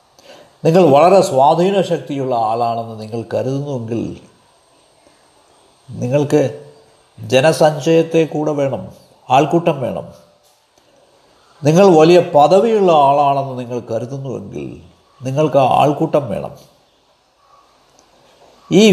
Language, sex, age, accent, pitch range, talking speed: Malayalam, male, 60-79, native, 130-175 Hz, 75 wpm